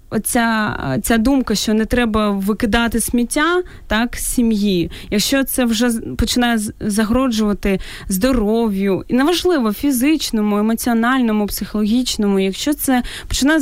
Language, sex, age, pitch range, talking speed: Ukrainian, female, 20-39, 195-245 Hz, 105 wpm